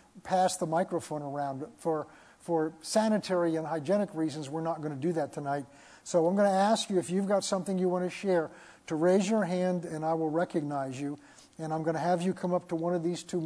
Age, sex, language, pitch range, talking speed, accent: 50-69, male, English, 155-185 Hz, 235 wpm, American